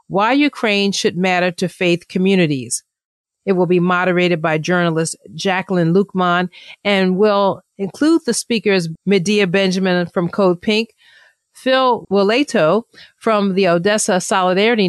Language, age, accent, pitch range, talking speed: English, 40-59, American, 175-210 Hz, 125 wpm